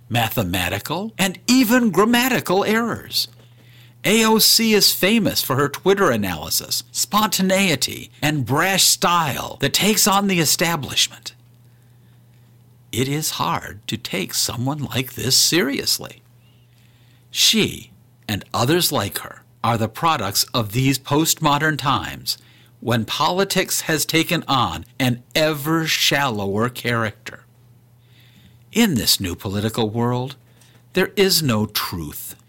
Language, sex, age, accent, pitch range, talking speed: English, male, 50-69, American, 120-170 Hz, 110 wpm